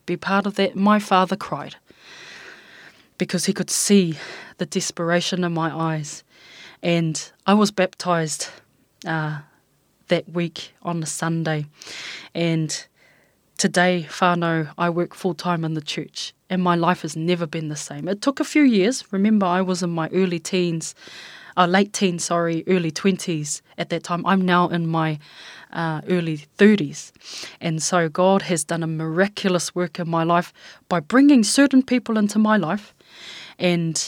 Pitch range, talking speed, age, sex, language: 165-190 Hz, 160 wpm, 20-39, female, English